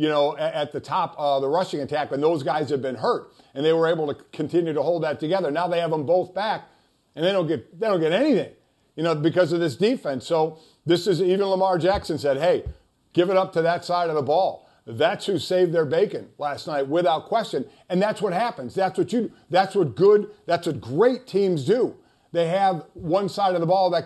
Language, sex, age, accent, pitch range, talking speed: English, male, 50-69, American, 155-195 Hz, 240 wpm